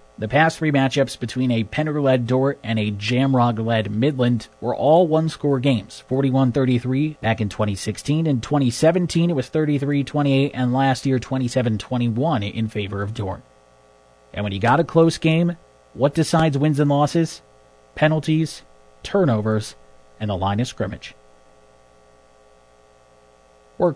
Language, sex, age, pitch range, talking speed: English, male, 30-49, 110-150 Hz, 135 wpm